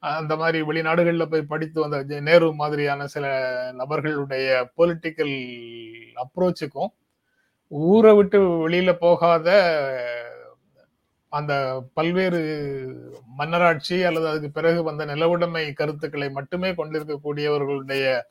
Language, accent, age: Tamil, native, 30-49